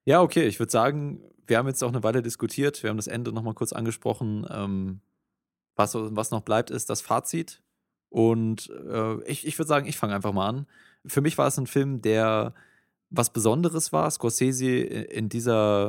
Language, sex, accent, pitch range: German, male, German, 105-120 Hz